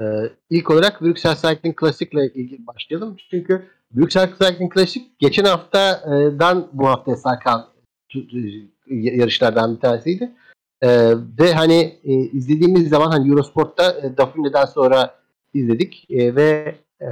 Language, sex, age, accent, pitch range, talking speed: Turkish, male, 50-69, native, 135-180 Hz, 130 wpm